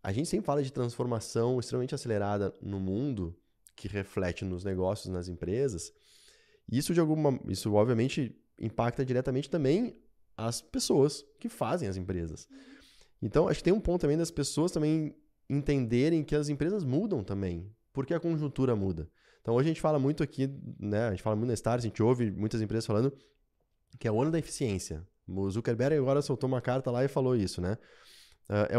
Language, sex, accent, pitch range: Portuguese, male, Brazilian, 110-150 Hz